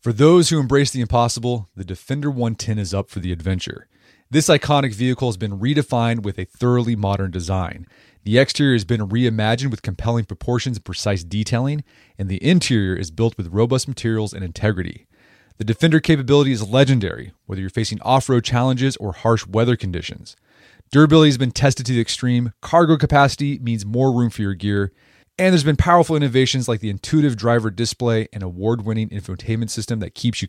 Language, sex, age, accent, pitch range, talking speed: English, male, 30-49, American, 105-135 Hz, 180 wpm